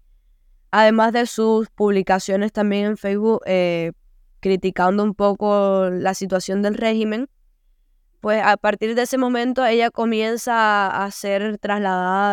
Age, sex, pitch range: 10-29, female, 195-220 Hz